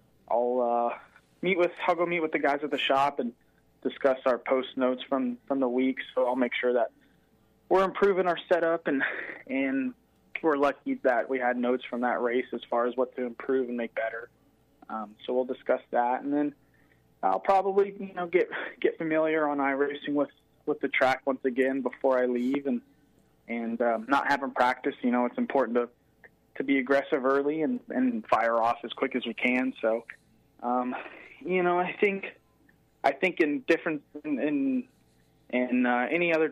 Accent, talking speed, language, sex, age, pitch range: American, 190 wpm, English, male, 20-39, 125-155 Hz